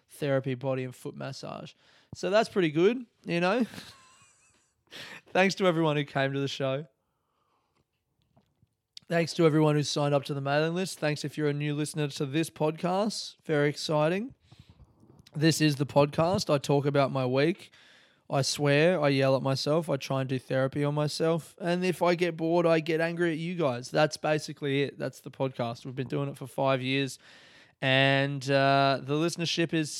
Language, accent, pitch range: English, Australian, 135-170 Hz